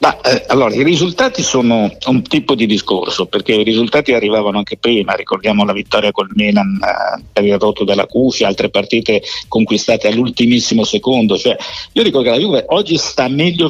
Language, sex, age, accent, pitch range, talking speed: Italian, male, 60-79, native, 110-155 Hz, 180 wpm